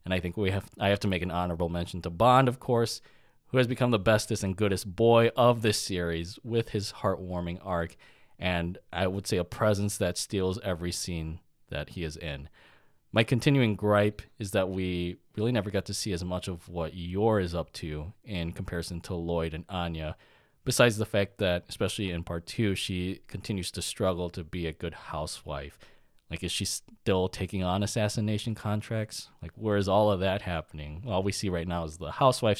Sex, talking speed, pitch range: male, 200 wpm, 90-110 Hz